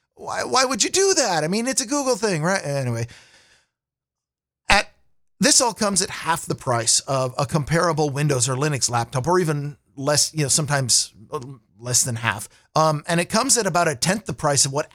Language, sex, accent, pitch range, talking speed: English, male, American, 140-195 Hz, 200 wpm